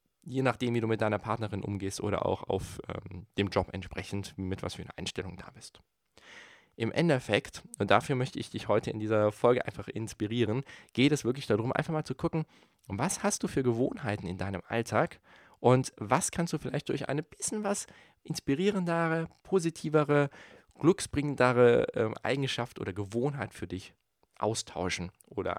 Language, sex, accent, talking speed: German, male, German, 165 wpm